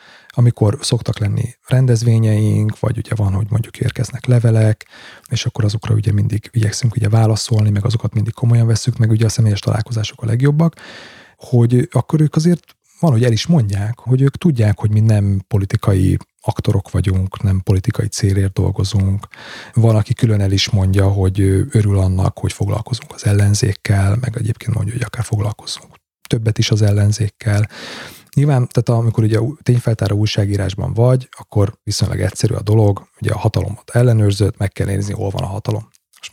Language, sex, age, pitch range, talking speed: Hungarian, male, 30-49, 105-120 Hz, 165 wpm